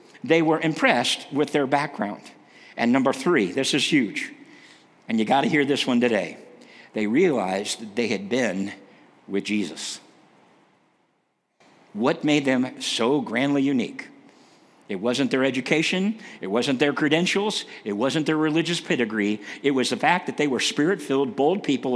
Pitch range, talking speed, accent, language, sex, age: 135-180 Hz, 155 wpm, American, English, male, 50-69